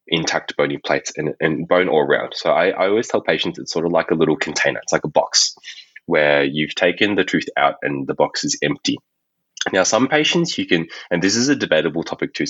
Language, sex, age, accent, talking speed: English, male, 20-39, Australian, 230 wpm